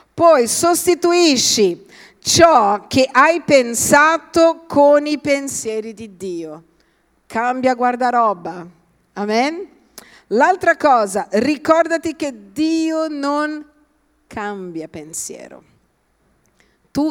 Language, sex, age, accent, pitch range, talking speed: Italian, female, 50-69, native, 220-310 Hz, 80 wpm